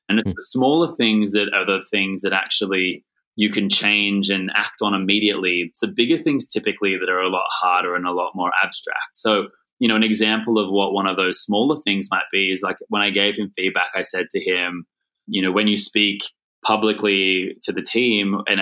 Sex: male